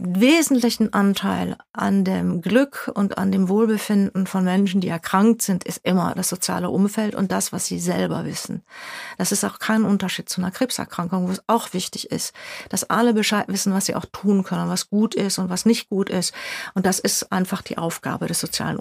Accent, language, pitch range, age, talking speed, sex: German, German, 185-220 Hz, 40-59, 200 wpm, female